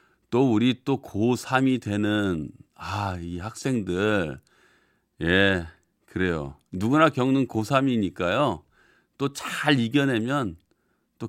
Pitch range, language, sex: 100-150 Hz, Korean, male